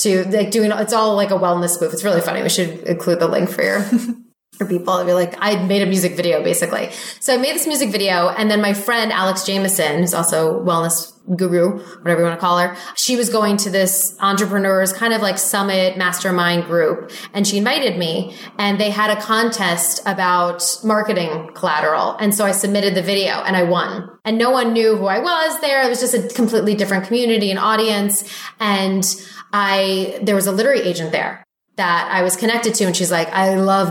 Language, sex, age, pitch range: English, female, 20-39, 175-210 Hz